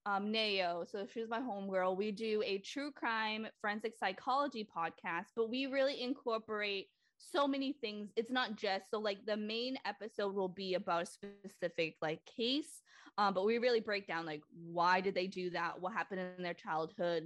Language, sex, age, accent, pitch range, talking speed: English, female, 20-39, American, 175-220 Hz, 185 wpm